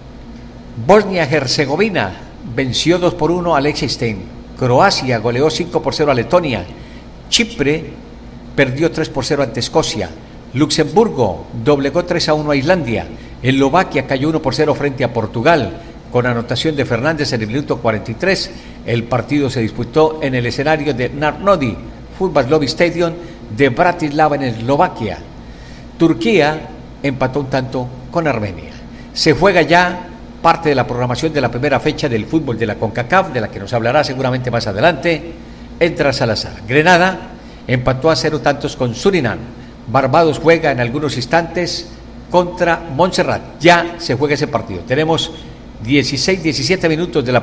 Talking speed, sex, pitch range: 150 wpm, male, 120-160 Hz